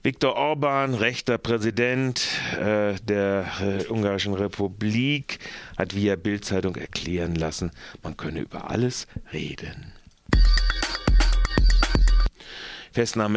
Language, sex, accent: German, male, German